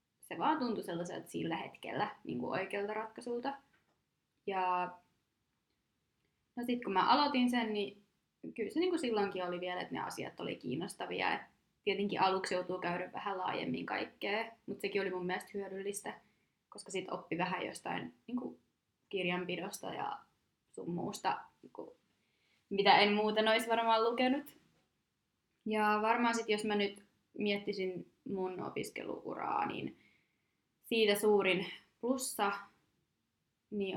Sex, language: female, Finnish